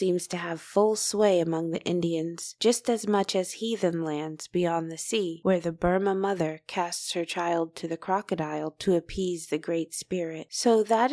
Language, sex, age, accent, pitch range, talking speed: English, female, 20-39, American, 175-210 Hz, 185 wpm